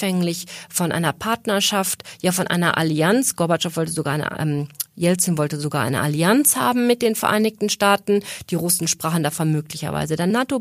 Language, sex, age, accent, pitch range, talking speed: German, female, 40-59, German, 180-235 Hz, 165 wpm